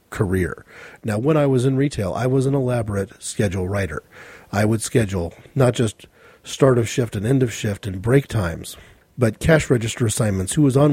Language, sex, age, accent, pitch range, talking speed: English, male, 40-59, American, 110-145 Hz, 190 wpm